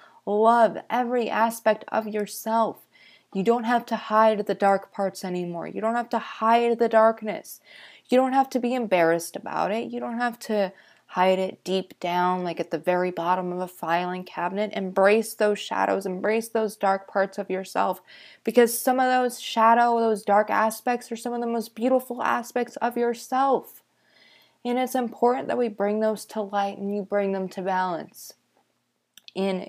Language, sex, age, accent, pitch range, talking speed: English, female, 20-39, American, 185-235 Hz, 180 wpm